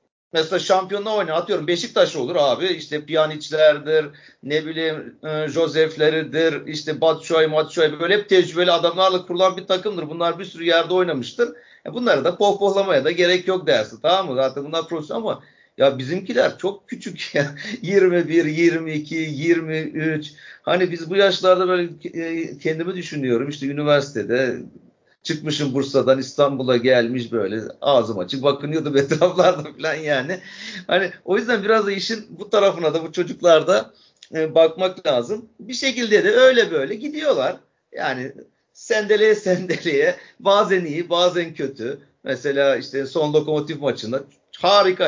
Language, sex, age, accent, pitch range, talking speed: Turkish, male, 50-69, native, 150-190 Hz, 130 wpm